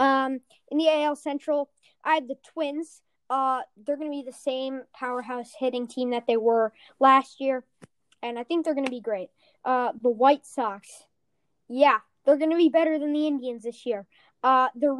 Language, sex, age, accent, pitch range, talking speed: English, female, 10-29, American, 230-275 Hz, 195 wpm